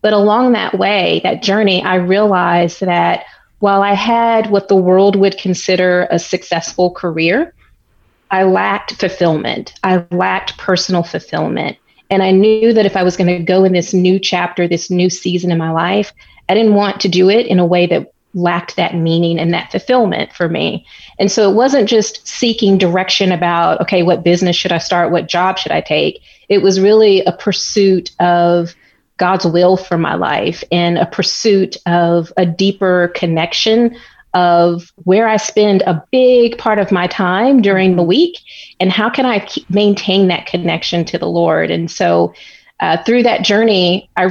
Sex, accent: female, American